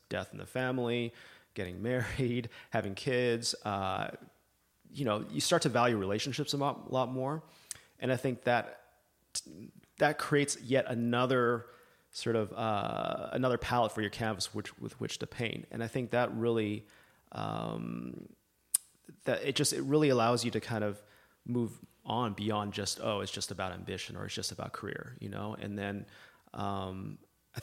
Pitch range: 105-120 Hz